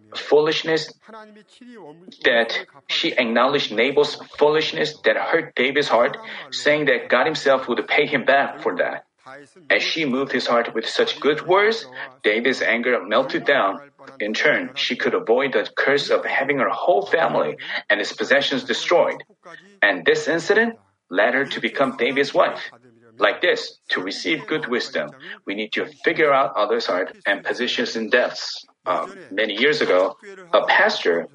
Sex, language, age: male, Korean, 30-49